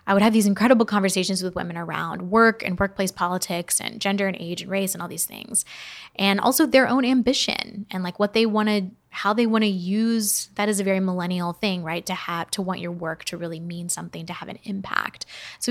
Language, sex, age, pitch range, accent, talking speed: English, female, 10-29, 185-225 Hz, American, 235 wpm